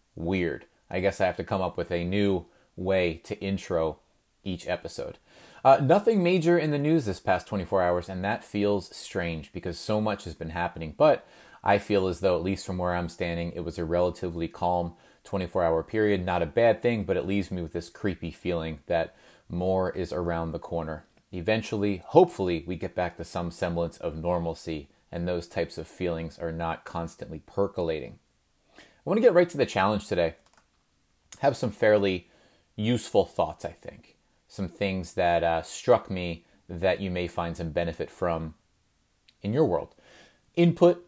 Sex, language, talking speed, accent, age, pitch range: male, English, 180 wpm, American, 30-49, 85-110 Hz